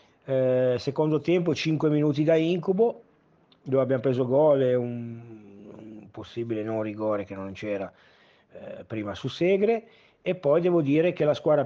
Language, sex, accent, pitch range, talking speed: Italian, male, native, 120-140 Hz, 150 wpm